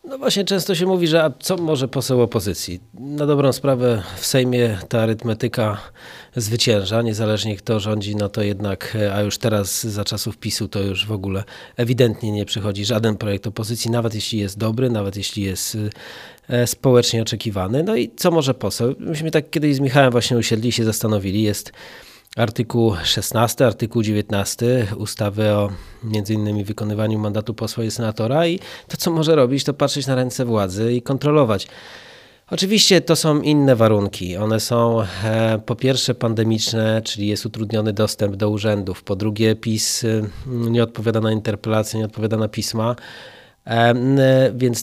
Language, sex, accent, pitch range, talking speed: Polish, male, native, 110-125 Hz, 160 wpm